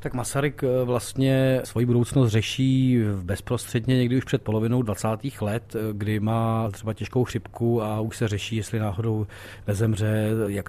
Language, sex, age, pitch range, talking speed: Czech, male, 40-59, 105-120 Hz, 145 wpm